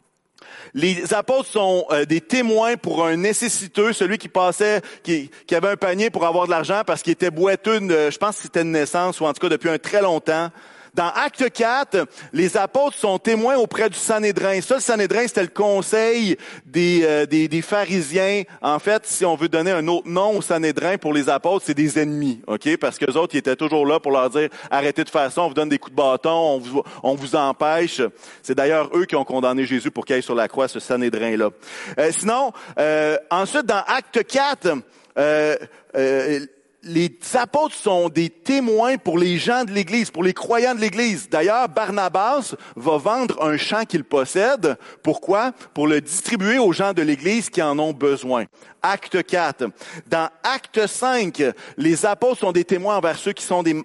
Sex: male